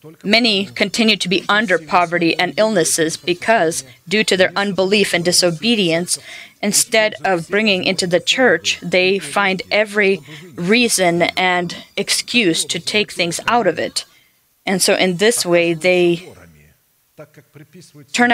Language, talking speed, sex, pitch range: English, 130 wpm, female, 165-200 Hz